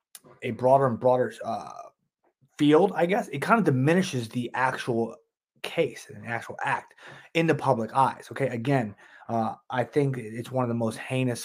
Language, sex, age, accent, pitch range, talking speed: English, male, 20-39, American, 115-135 Hz, 180 wpm